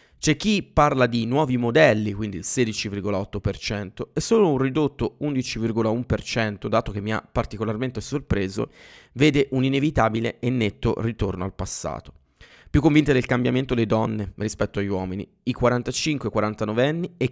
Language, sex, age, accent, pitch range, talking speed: Italian, male, 30-49, native, 105-130 Hz, 140 wpm